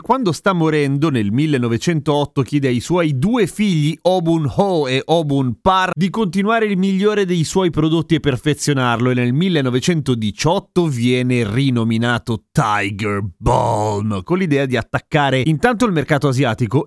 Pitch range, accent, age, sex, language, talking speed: 120-160 Hz, native, 30-49, male, Italian, 140 wpm